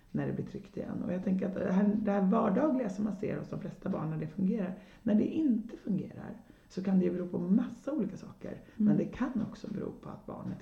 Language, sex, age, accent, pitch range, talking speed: Swedish, female, 30-49, native, 155-210 Hz, 250 wpm